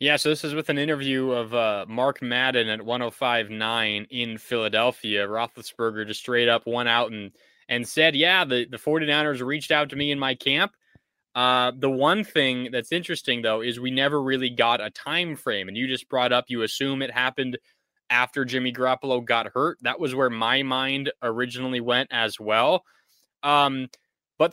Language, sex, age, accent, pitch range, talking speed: English, male, 20-39, American, 120-150 Hz, 190 wpm